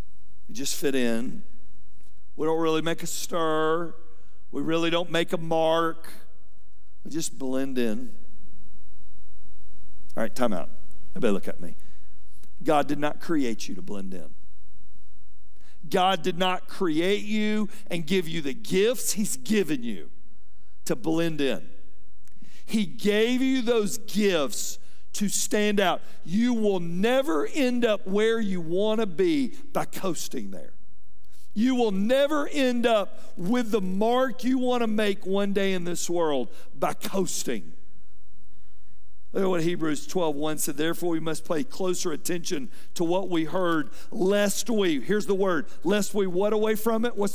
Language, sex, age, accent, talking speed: English, male, 50-69, American, 150 wpm